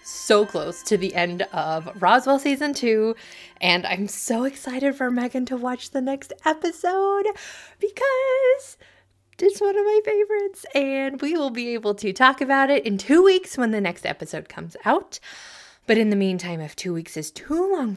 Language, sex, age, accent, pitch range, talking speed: English, female, 20-39, American, 190-285 Hz, 180 wpm